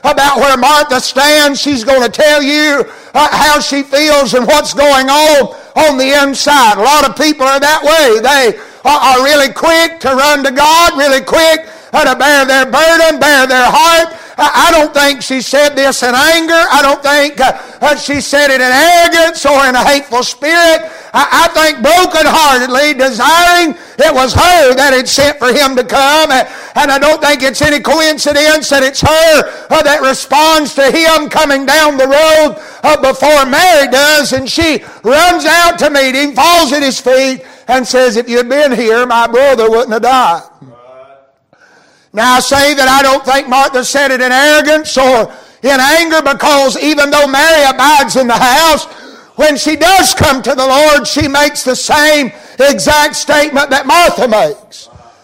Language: English